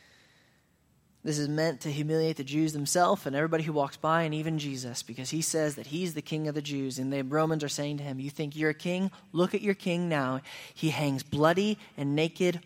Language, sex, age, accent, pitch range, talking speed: English, male, 20-39, American, 130-155 Hz, 230 wpm